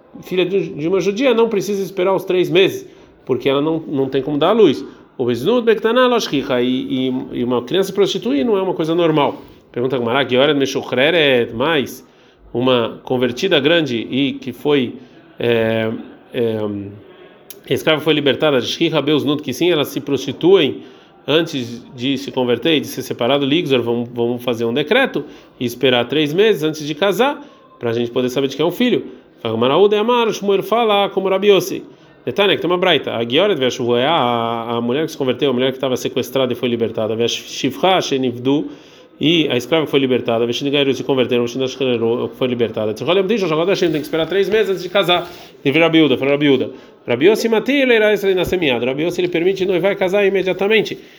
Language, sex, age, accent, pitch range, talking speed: Portuguese, male, 40-59, Brazilian, 125-195 Hz, 145 wpm